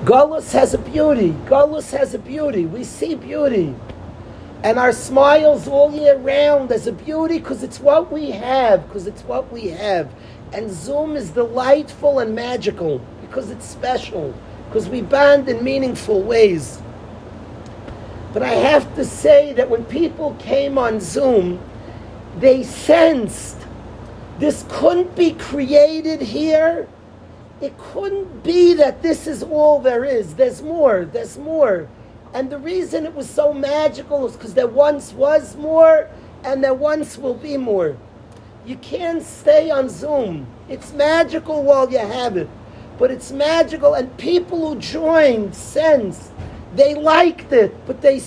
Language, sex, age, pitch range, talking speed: English, male, 50-69, 230-305 Hz, 150 wpm